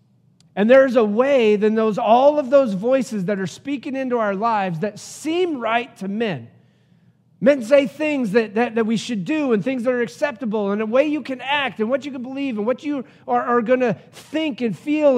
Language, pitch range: English, 195-255 Hz